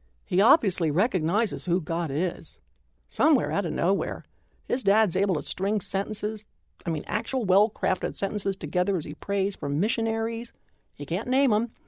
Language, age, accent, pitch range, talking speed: English, 60-79, American, 160-225 Hz, 155 wpm